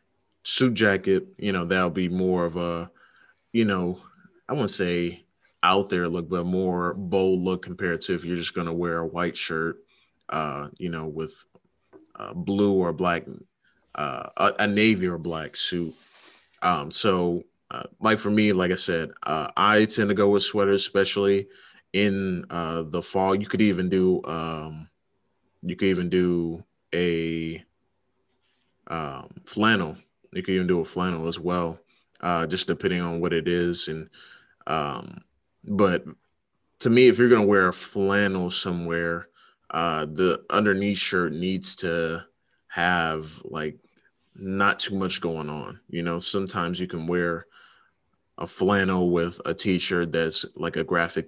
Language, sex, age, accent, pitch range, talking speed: English, male, 30-49, American, 85-95 Hz, 160 wpm